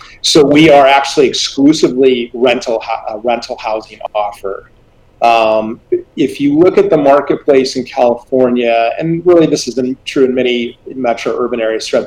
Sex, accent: male, American